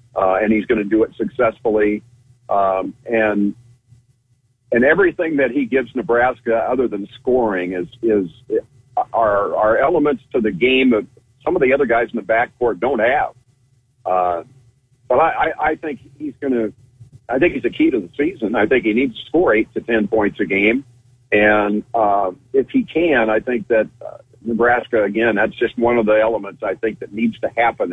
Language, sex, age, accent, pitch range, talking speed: English, male, 50-69, American, 110-135 Hz, 190 wpm